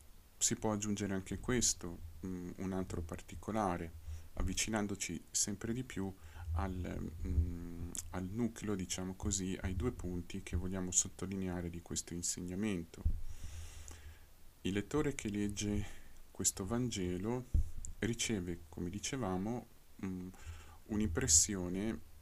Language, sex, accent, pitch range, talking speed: Italian, male, native, 85-105 Hz, 95 wpm